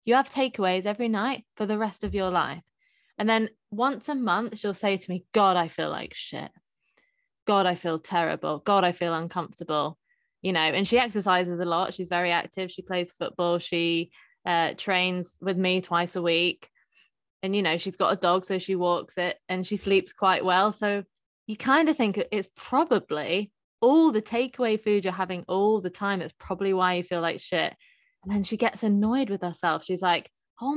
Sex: female